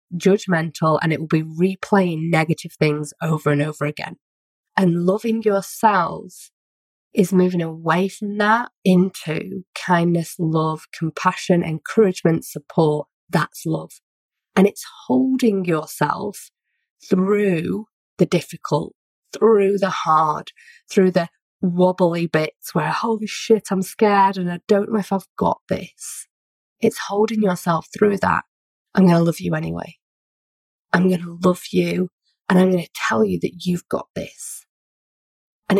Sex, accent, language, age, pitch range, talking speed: female, British, English, 30-49, 165-205 Hz, 135 wpm